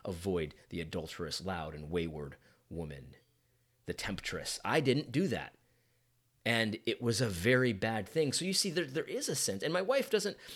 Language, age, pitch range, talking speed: English, 30-49, 105-150 Hz, 180 wpm